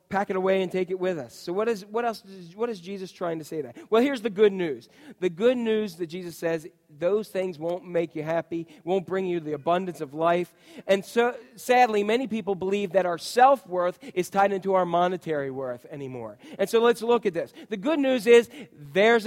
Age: 40-59